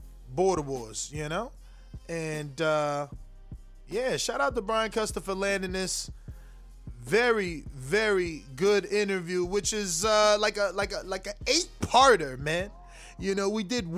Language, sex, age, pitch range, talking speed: English, male, 20-39, 165-210 Hz, 150 wpm